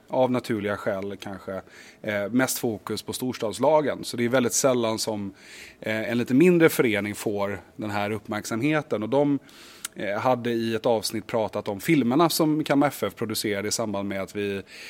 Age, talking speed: 30-49, 155 wpm